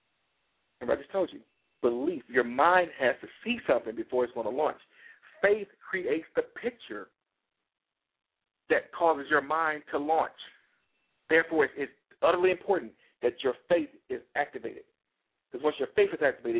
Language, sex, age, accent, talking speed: English, male, 50-69, American, 150 wpm